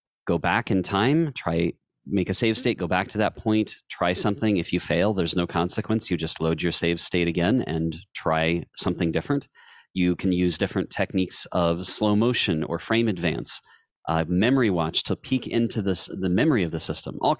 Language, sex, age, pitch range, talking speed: English, male, 40-59, 90-120 Hz, 195 wpm